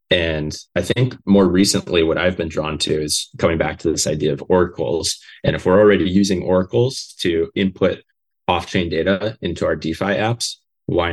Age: 20-39